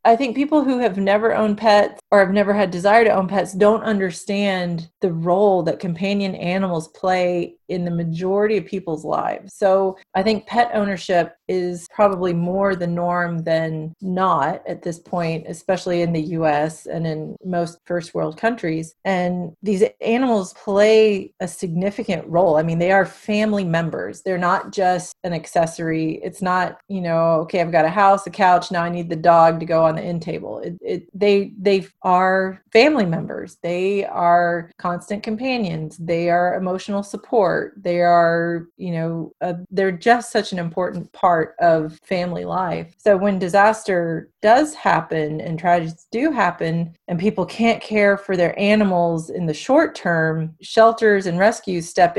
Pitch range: 170-205 Hz